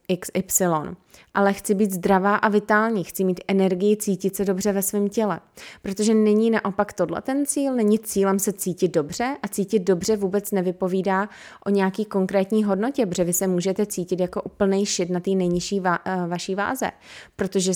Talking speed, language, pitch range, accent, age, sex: 170 wpm, Czech, 180-205 Hz, native, 20-39, female